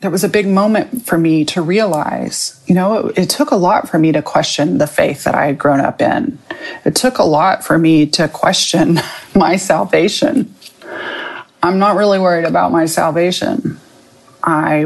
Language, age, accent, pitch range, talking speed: English, 30-49, American, 160-215 Hz, 185 wpm